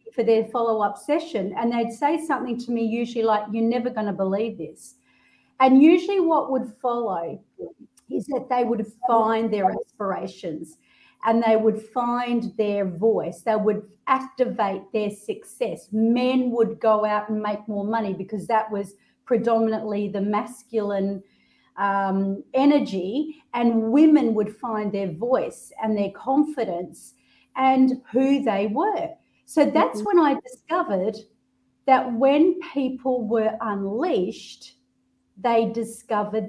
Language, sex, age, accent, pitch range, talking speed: English, female, 40-59, Australian, 200-255 Hz, 135 wpm